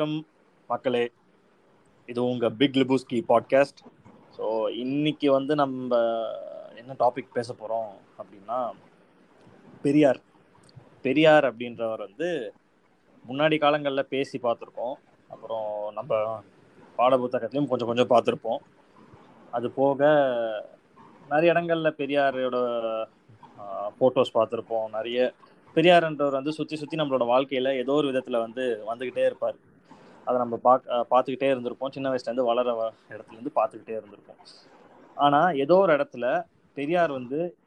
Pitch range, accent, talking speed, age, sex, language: 120-150 Hz, native, 90 wpm, 20-39, male, Tamil